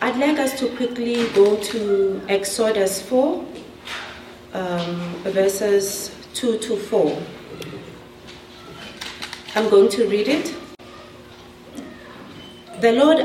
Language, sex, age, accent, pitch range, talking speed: English, female, 30-49, South African, 195-270 Hz, 95 wpm